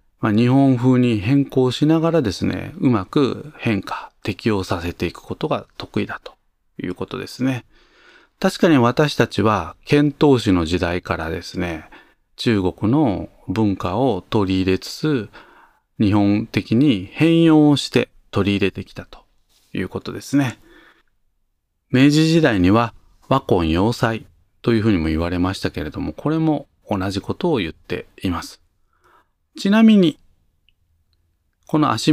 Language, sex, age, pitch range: Japanese, male, 40-59, 90-130 Hz